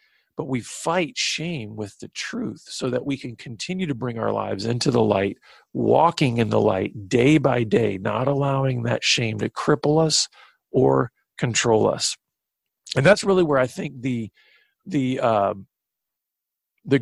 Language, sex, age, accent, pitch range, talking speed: English, male, 40-59, American, 115-155 Hz, 160 wpm